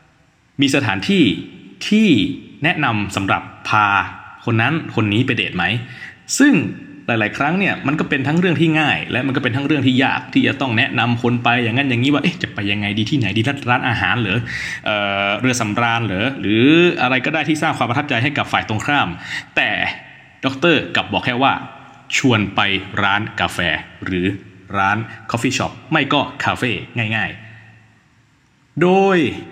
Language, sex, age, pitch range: English, male, 20-39, 105-145 Hz